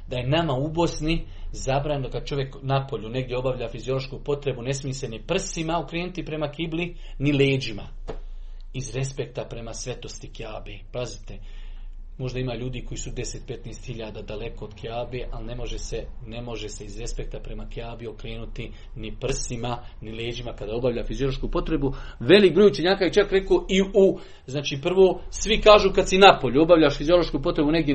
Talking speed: 165 wpm